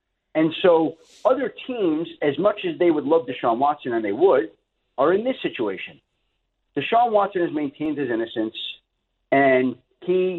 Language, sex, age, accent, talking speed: English, male, 50-69, American, 155 wpm